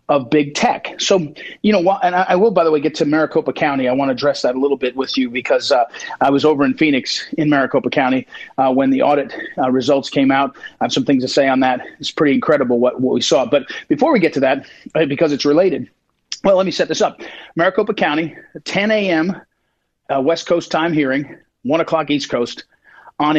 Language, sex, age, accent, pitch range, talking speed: English, male, 40-59, American, 145-195 Hz, 225 wpm